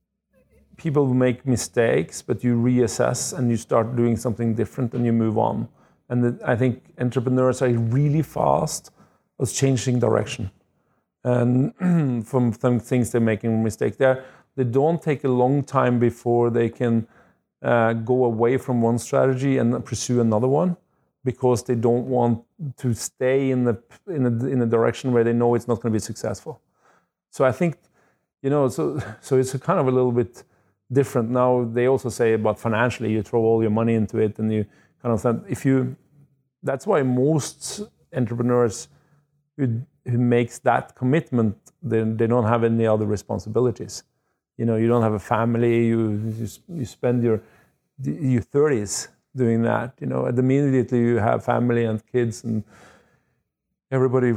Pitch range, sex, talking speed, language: 115-130 Hz, male, 170 wpm, English